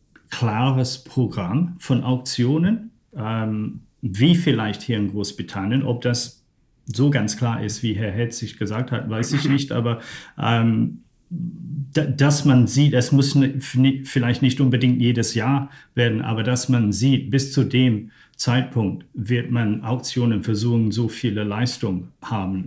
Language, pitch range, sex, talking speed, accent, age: German, 105-130 Hz, male, 145 wpm, German, 50-69